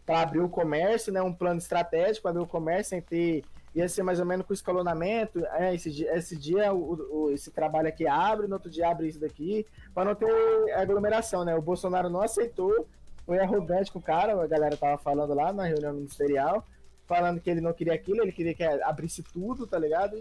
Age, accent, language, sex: 20-39, Brazilian, Portuguese, male